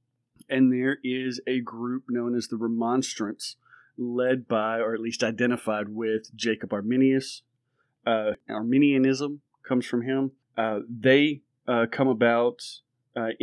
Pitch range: 115-130 Hz